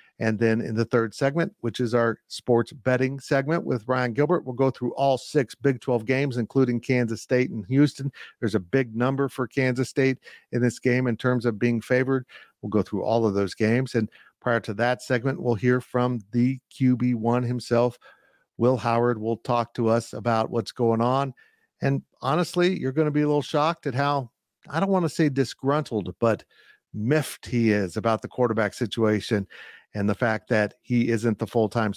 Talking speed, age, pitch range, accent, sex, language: 195 wpm, 50-69, 115-145 Hz, American, male, English